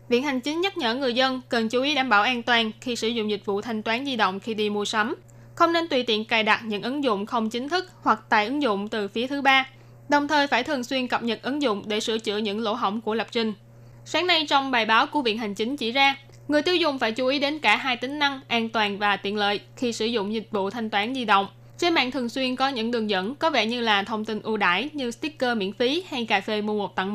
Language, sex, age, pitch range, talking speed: Vietnamese, female, 10-29, 210-265 Hz, 280 wpm